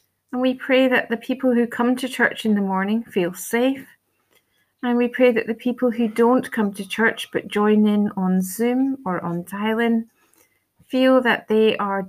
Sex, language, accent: female, English, British